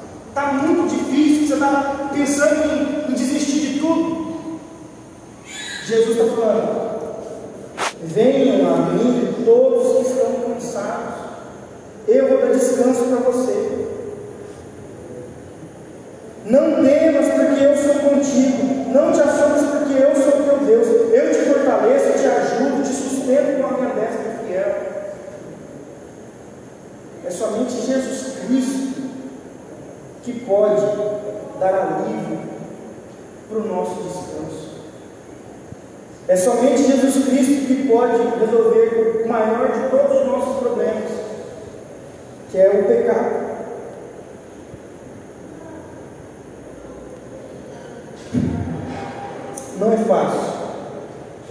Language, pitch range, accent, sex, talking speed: Portuguese, 220-290 Hz, Brazilian, male, 100 wpm